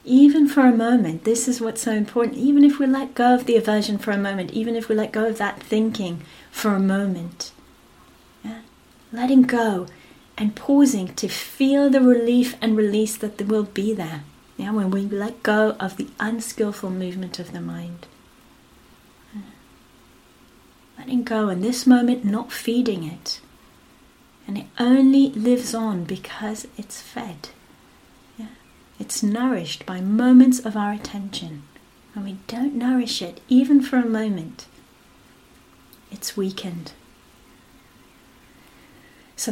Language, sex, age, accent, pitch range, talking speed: English, female, 30-49, British, 190-245 Hz, 140 wpm